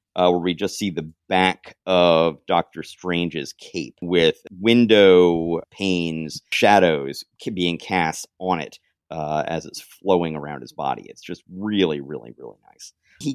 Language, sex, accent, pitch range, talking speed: English, male, American, 80-105 Hz, 150 wpm